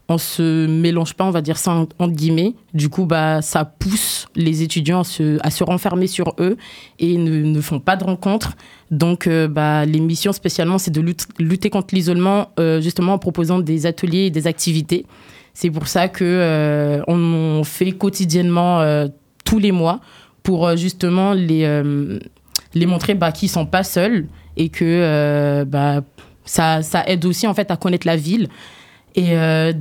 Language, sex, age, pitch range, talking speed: French, female, 20-39, 155-180 Hz, 185 wpm